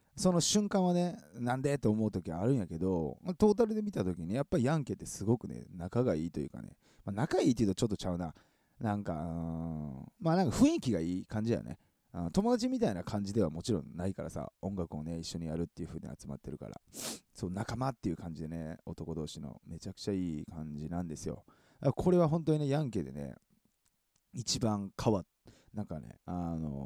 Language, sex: Japanese, male